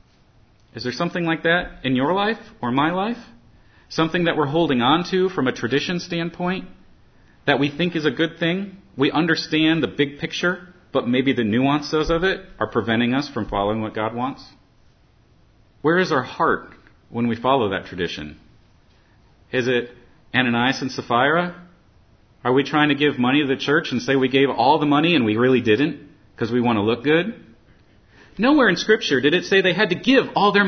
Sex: male